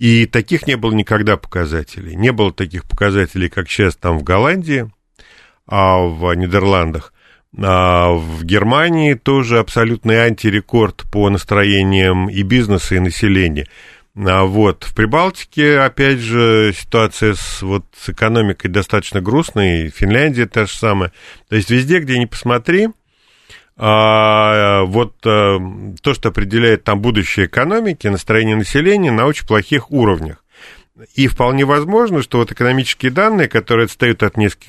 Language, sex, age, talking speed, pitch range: Russian, male, 40-59, 130 wpm, 100-120 Hz